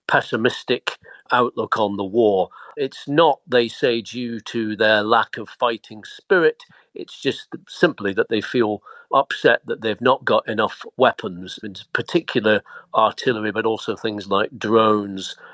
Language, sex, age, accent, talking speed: English, male, 40-59, British, 145 wpm